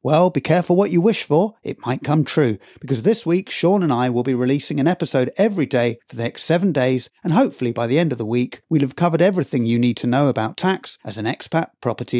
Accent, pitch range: British, 130-180 Hz